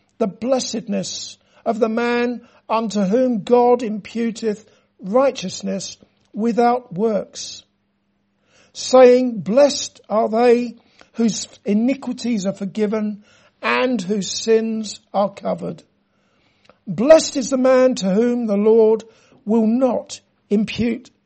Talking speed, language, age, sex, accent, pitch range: 100 wpm, English, 60-79, male, British, 210-250 Hz